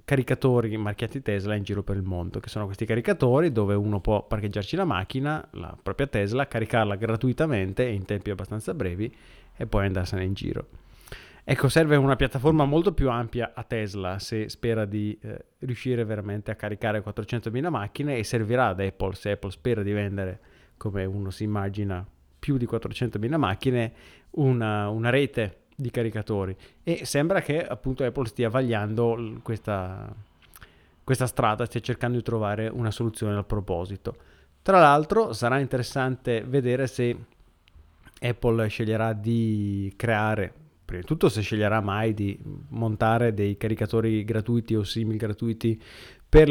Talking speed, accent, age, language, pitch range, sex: 150 wpm, native, 30-49, Italian, 105-125 Hz, male